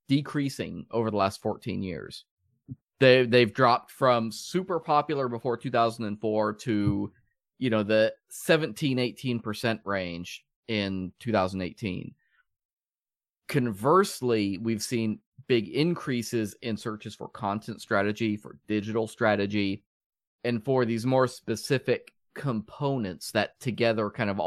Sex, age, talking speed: male, 30-49, 110 wpm